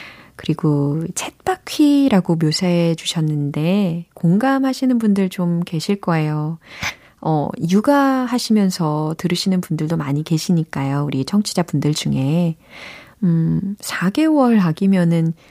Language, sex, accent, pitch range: Korean, female, native, 155-205 Hz